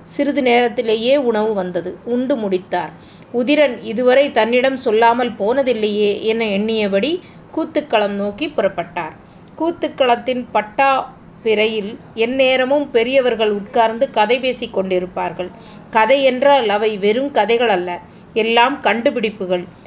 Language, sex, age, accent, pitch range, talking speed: Tamil, female, 20-39, native, 210-265 Hz, 100 wpm